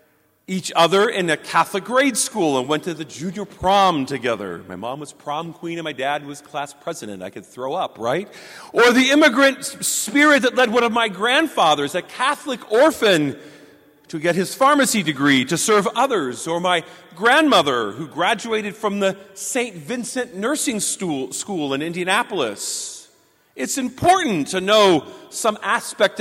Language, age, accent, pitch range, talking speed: English, 40-59, American, 175-260 Hz, 160 wpm